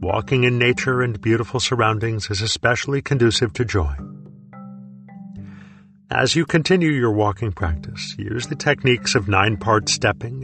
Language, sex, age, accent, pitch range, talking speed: Hindi, male, 50-69, American, 100-125 Hz, 130 wpm